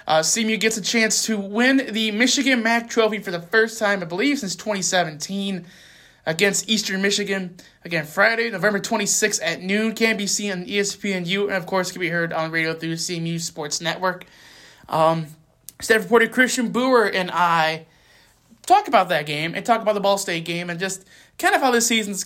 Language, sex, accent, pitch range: English, male, American, 165-210 Hz